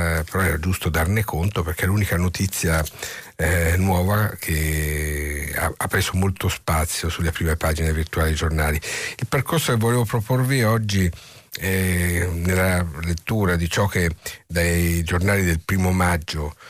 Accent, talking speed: native, 145 wpm